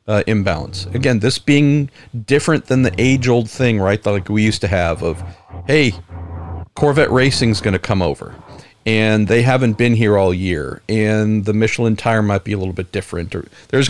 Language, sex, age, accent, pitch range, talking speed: English, male, 50-69, American, 100-120 Hz, 190 wpm